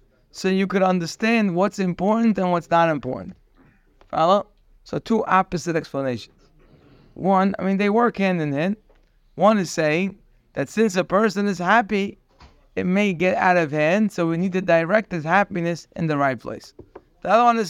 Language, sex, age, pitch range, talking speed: English, male, 20-39, 145-195 Hz, 180 wpm